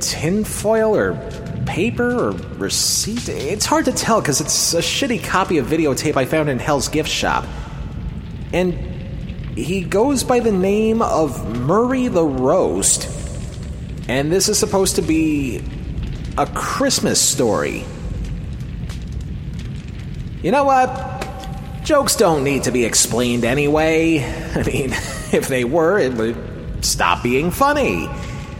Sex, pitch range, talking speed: male, 155-245 Hz, 130 wpm